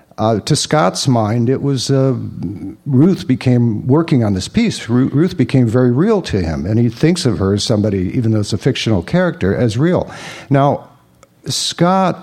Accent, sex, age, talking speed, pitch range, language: American, male, 60-79, 175 wpm, 110-145 Hz, English